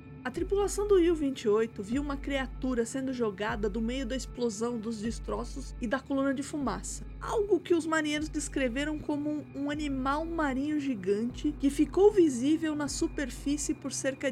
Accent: Brazilian